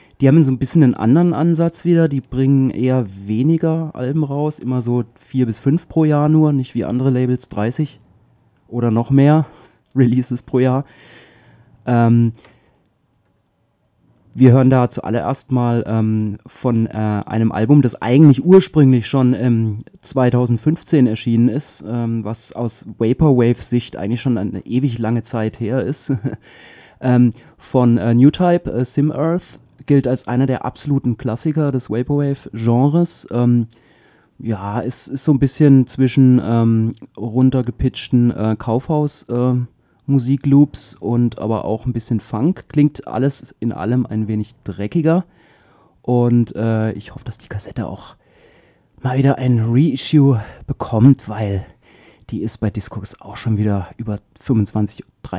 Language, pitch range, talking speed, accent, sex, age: English, 110-135 Hz, 140 wpm, German, male, 30-49